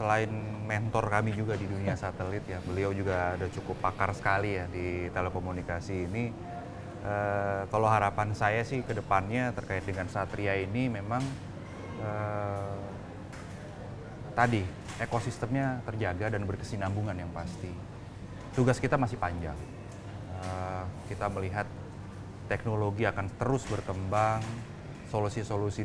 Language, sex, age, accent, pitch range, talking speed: Indonesian, male, 20-39, native, 95-115 Hz, 115 wpm